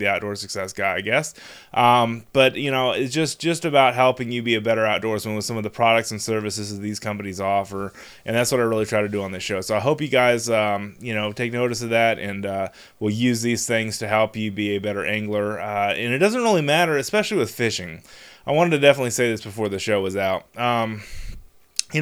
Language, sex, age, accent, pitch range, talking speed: English, male, 20-39, American, 105-125 Hz, 245 wpm